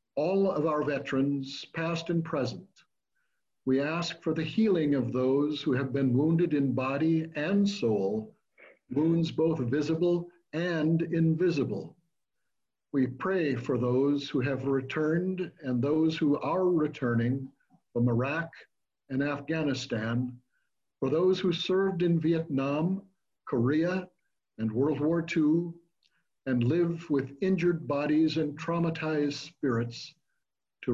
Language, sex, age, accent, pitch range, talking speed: English, male, 60-79, American, 135-170 Hz, 120 wpm